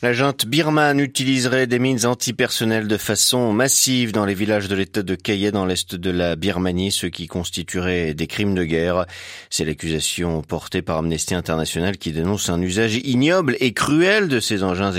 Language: French